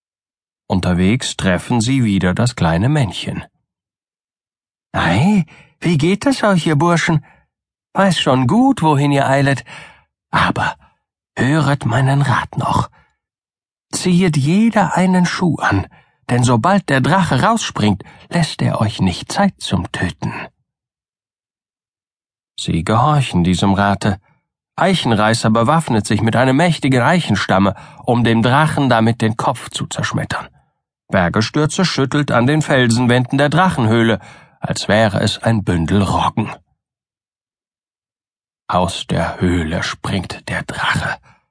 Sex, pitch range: male, 105-155 Hz